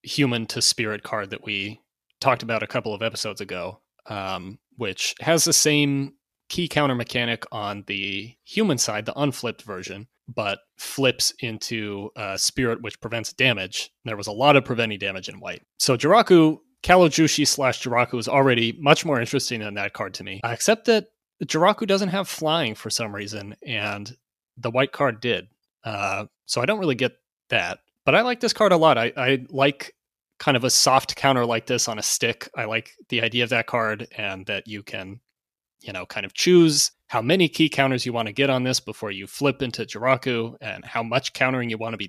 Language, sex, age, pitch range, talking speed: English, male, 30-49, 115-145 Hz, 200 wpm